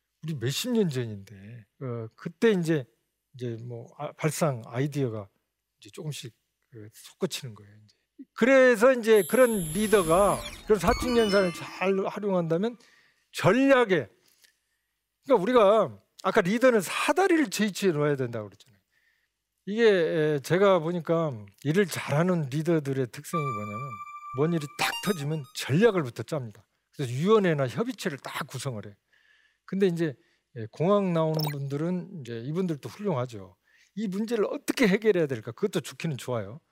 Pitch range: 135-215 Hz